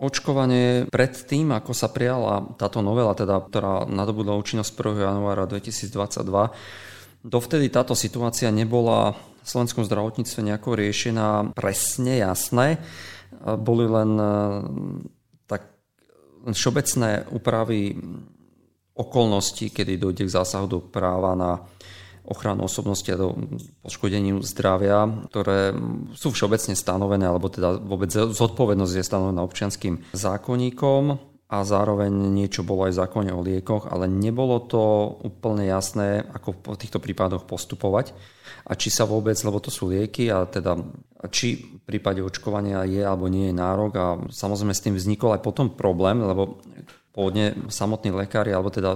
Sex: male